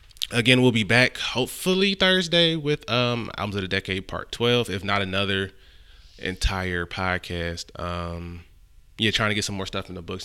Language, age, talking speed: English, 20-39, 175 wpm